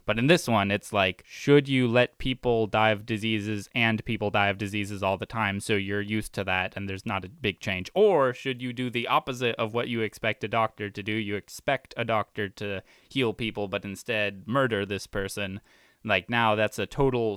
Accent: American